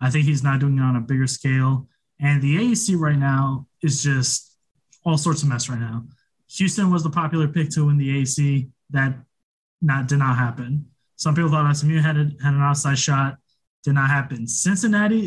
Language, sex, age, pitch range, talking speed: English, male, 20-39, 135-165 Hz, 200 wpm